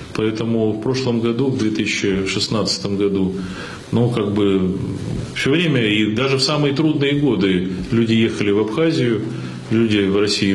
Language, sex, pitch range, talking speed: Russian, male, 105-130 Hz, 140 wpm